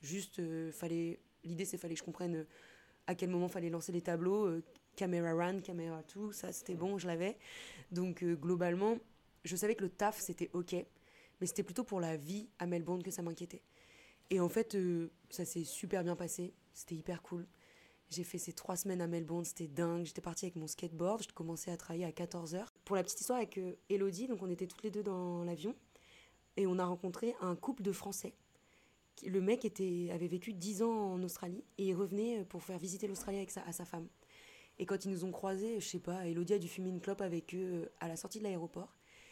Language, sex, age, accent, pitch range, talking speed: French, female, 20-39, French, 170-200 Hz, 225 wpm